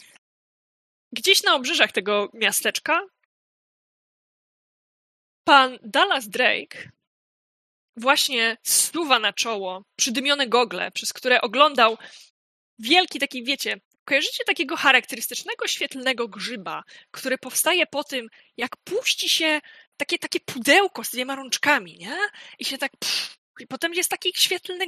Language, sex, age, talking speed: Polish, female, 20-39, 115 wpm